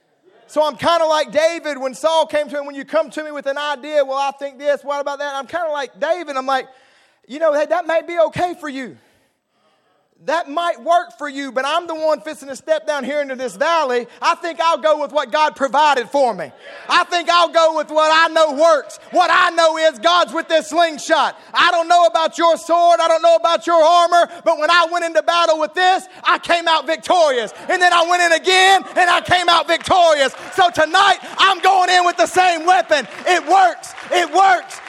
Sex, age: male, 30-49